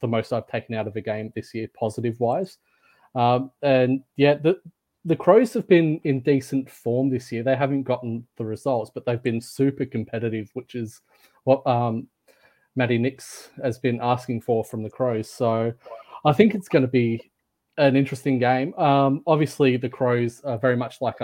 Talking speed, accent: 185 wpm, Australian